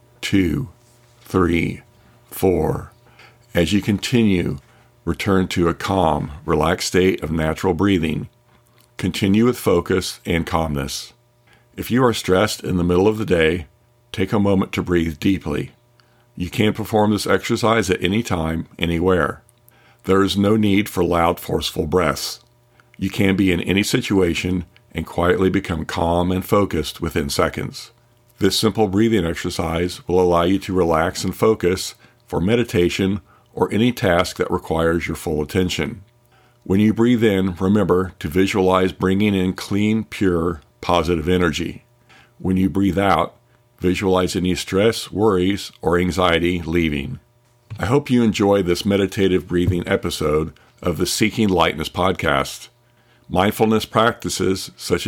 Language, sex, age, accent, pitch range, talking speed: English, male, 50-69, American, 90-110 Hz, 140 wpm